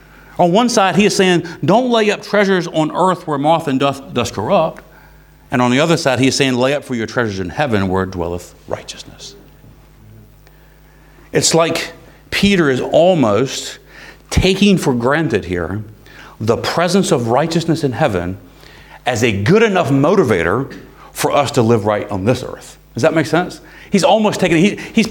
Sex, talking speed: male, 175 wpm